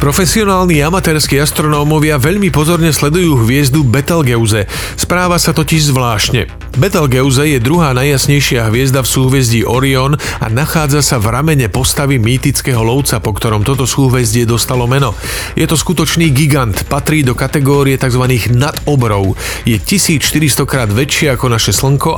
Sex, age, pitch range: male, 40-59, 120-150 Hz